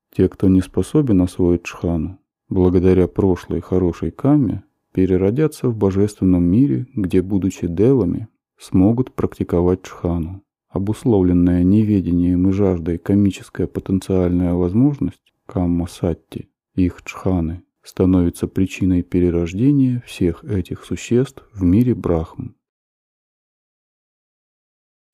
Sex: male